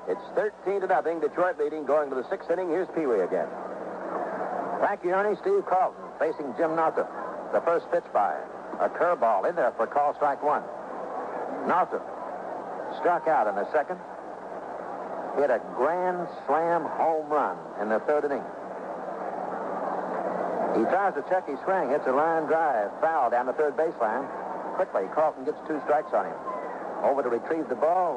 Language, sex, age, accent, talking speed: English, male, 60-79, American, 160 wpm